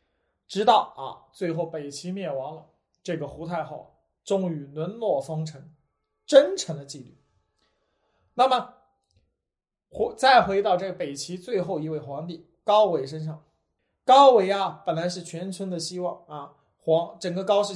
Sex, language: male, Chinese